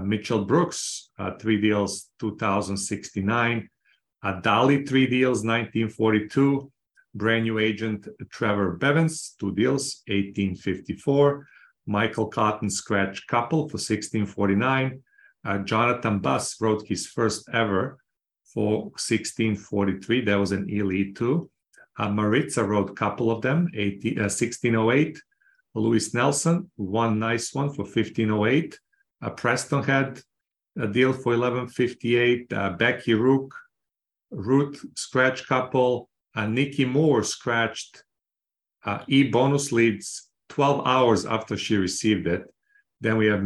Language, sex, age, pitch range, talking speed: English, male, 40-59, 105-130 Hz, 115 wpm